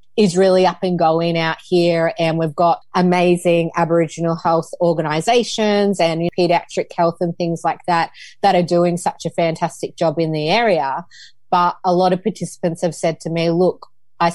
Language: English